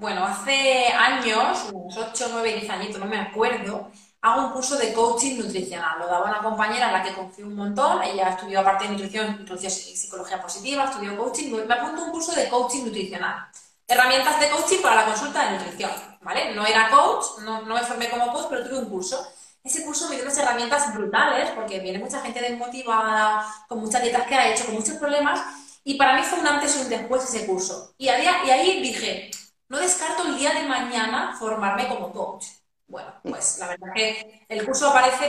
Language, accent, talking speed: Spanish, Spanish, 205 wpm